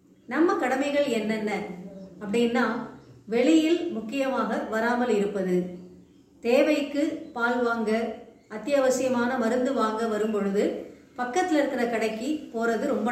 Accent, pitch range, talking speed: native, 230-295 Hz, 95 wpm